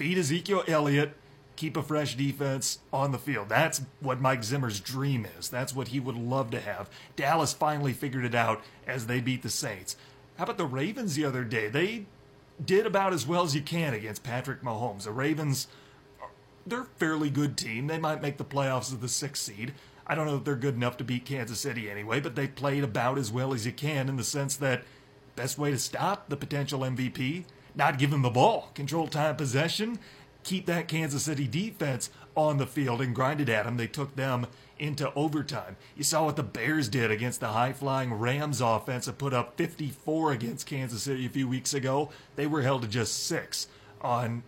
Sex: male